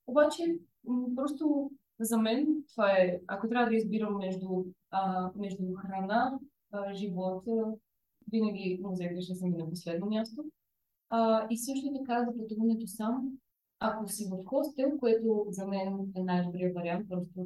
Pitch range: 200-265 Hz